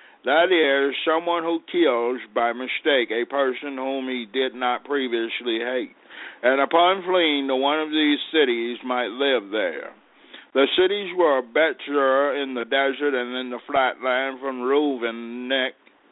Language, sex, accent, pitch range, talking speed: English, male, American, 125-145 Hz, 155 wpm